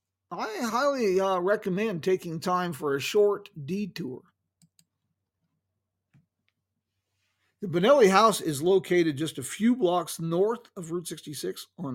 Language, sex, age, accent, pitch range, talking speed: English, male, 50-69, American, 125-180 Hz, 120 wpm